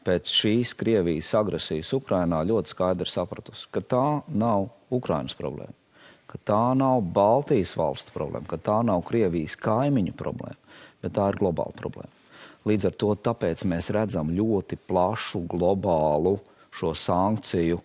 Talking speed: 140 wpm